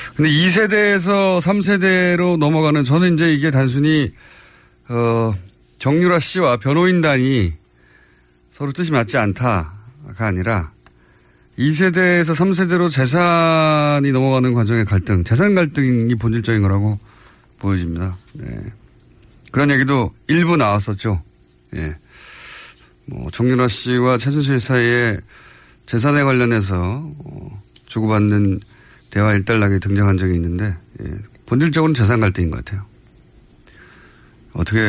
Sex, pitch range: male, 95-145 Hz